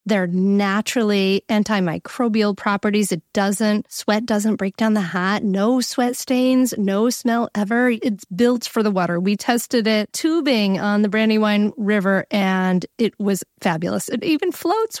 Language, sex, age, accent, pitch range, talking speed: English, female, 30-49, American, 195-240 Hz, 150 wpm